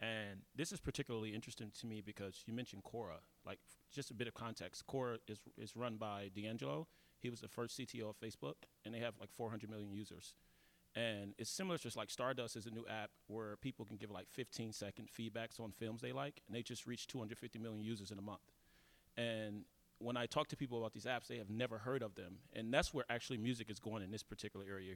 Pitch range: 105-130 Hz